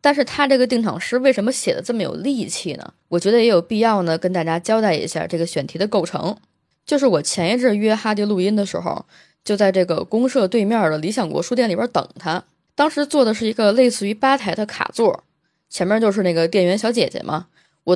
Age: 20-39